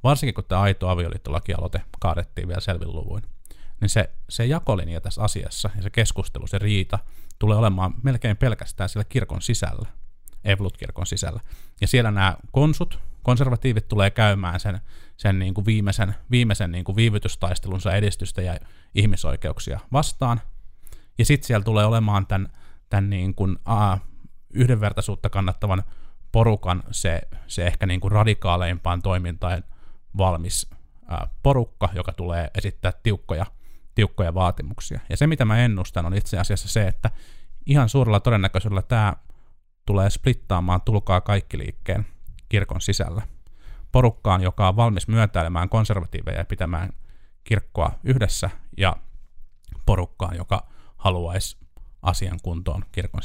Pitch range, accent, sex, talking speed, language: 90-105 Hz, native, male, 130 wpm, Finnish